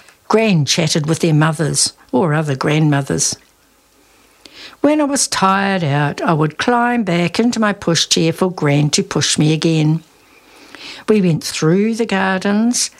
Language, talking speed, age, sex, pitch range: English, 145 wpm, 60-79, female, 155-205 Hz